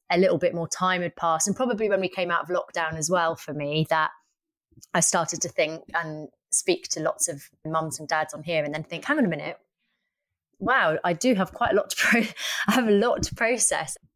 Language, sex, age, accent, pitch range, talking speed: English, female, 30-49, British, 160-205 Hz, 235 wpm